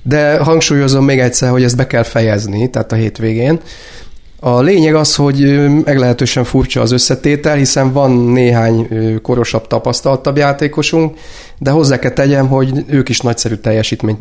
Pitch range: 115-140 Hz